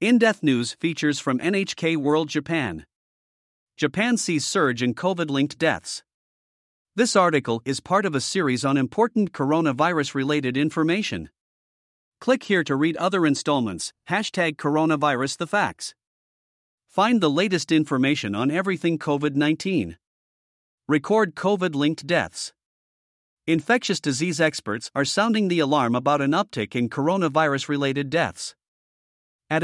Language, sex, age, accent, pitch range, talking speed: English, male, 50-69, American, 135-175 Hz, 115 wpm